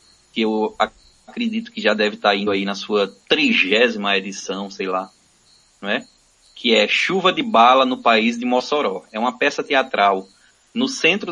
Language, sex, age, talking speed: Portuguese, male, 20-39, 165 wpm